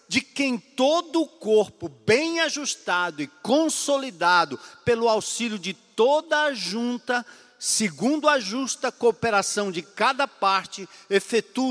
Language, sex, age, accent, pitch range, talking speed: Portuguese, male, 50-69, Brazilian, 210-290 Hz, 120 wpm